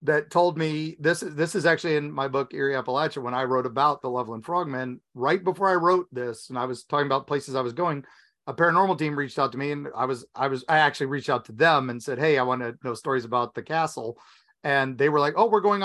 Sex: male